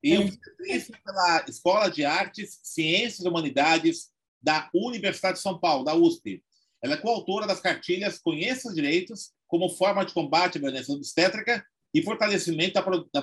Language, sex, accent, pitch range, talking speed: Portuguese, male, Brazilian, 160-235 Hz, 155 wpm